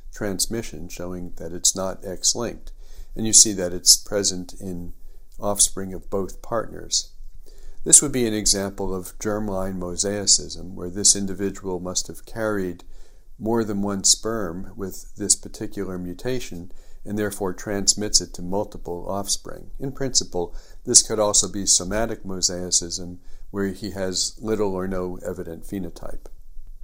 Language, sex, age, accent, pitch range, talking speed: English, male, 50-69, American, 90-105 Hz, 140 wpm